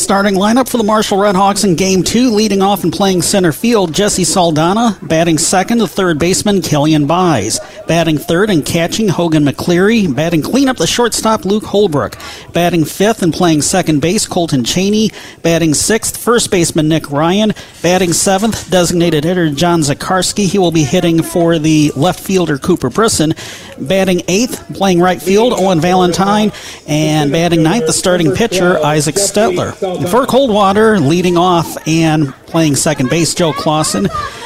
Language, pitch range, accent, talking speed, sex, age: English, 160-200 Hz, American, 160 wpm, male, 40-59